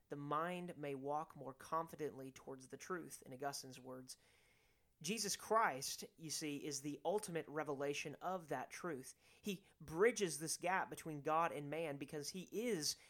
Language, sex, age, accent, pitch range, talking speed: English, male, 30-49, American, 140-180 Hz, 155 wpm